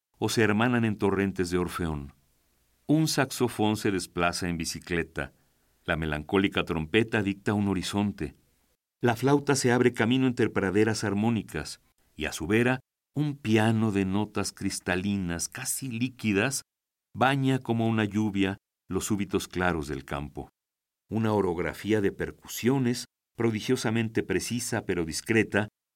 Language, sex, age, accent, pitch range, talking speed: Spanish, male, 50-69, Mexican, 90-115 Hz, 125 wpm